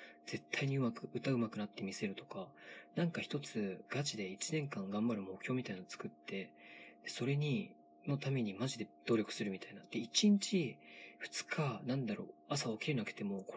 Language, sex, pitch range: Japanese, male, 95-150 Hz